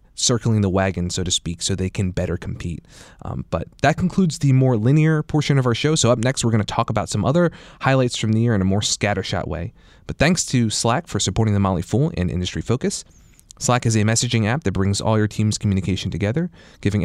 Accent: American